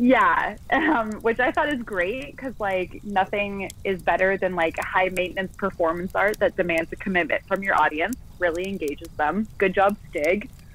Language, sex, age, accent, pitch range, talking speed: English, female, 20-39, American, 170-210 Hz, 165 wpm